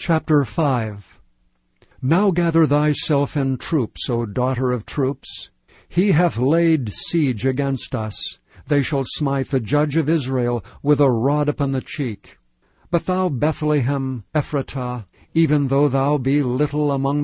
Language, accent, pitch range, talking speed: English, American, 125-150 Hz, 140 wpm